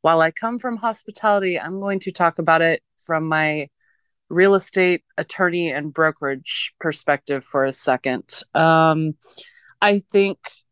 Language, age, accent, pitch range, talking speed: English, 20-39, American, 155-185 Hz, 140 wpm